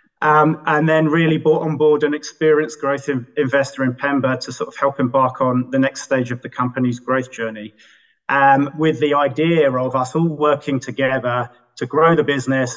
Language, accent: English, British